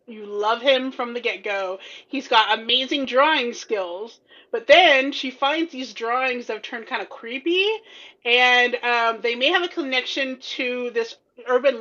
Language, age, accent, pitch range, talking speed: English, 30-49, American, 230-290 Hz, 170 wpm